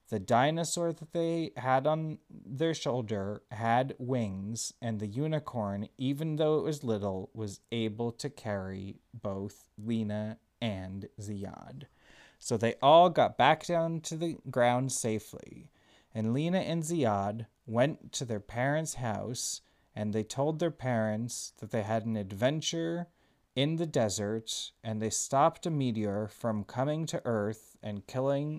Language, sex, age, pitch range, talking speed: English, male, 30-49, 105-145 Hz, 145 wpm